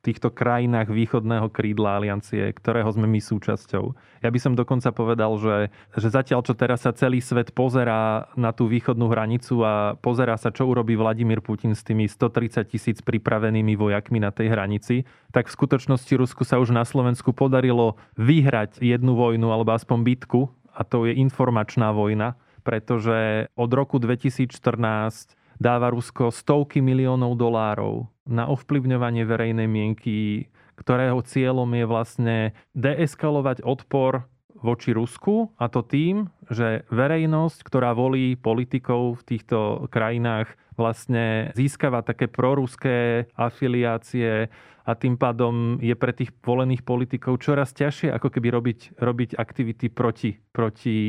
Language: Slovak